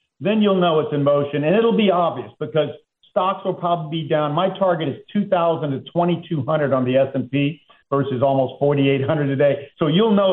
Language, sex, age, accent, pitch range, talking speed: English, male, 50-69, American, 135-180 Hz, 190 wpm